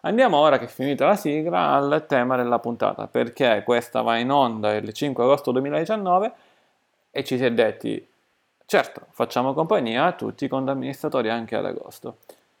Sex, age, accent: male, 30-49, native